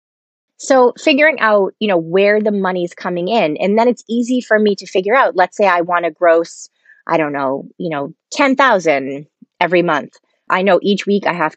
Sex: female